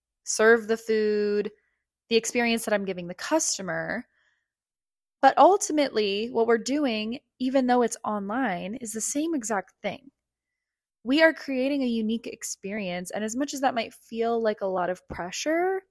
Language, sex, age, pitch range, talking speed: English, female, 20-39, 210-280 Hz, 160 wpm